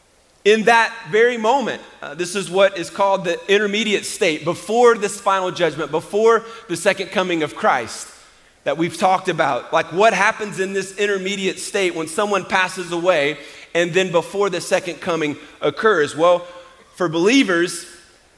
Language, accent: English, American